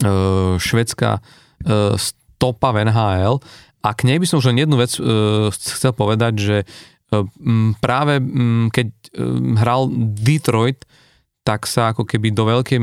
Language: Slovak